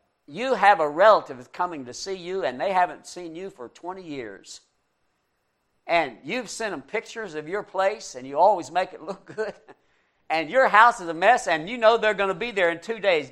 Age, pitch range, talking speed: 60-79, 165-220 Hz, 215 wpm